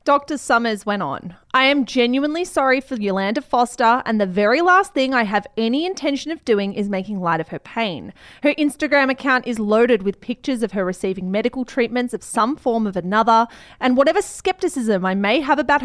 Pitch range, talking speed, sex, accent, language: 210-285 Hz, 195 wpm, female, Australian, English